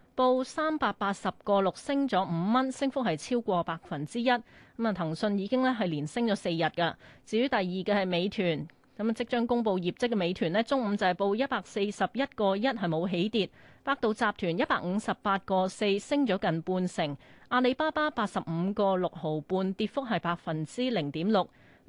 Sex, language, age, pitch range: female, Chinese, 30-49, 180-250 Hz